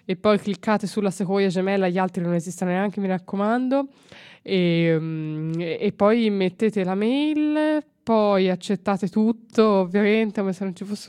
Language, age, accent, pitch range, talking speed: Italian, 20-39, native, 170-210 Hz, 150 wpm